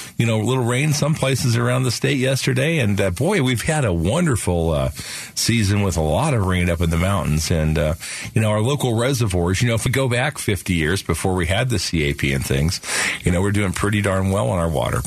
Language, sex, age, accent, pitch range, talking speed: English, male, 50-69, American, 85-120 Hz, 245 wpm